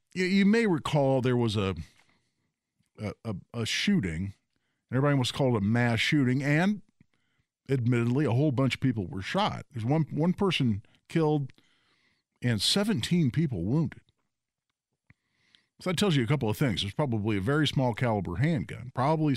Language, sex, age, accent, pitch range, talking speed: English, male, 50-69, American, 115-155 Hz, 160 wpm